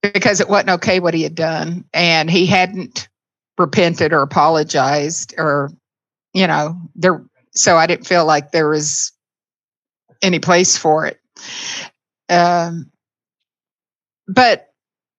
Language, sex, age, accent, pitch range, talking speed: English, female, 60-79, American, 160-190 Hz, 125 wpm